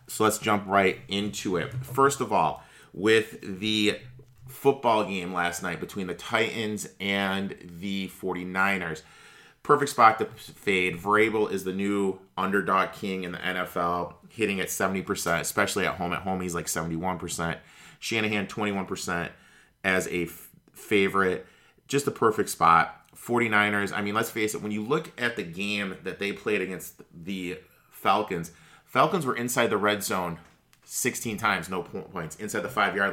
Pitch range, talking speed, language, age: 95-115 Hz, 155 wpm, English, 30-49